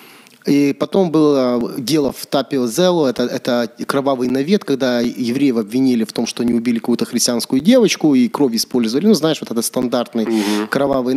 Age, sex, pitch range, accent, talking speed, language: 30-49, male, 120-155 Hz, native, 160 wpm, Ukrainian